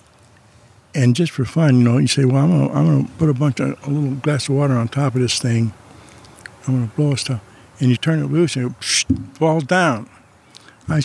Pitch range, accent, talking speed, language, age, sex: 120-145 Hz, American, 230 wpm, English, 60-79, male